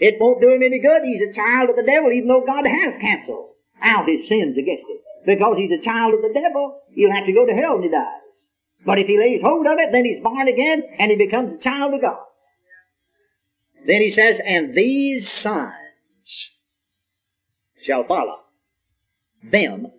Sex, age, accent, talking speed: male, 50-69, American, 195 wpm